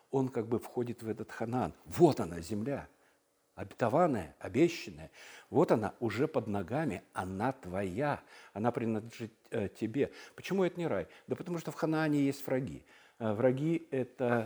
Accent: native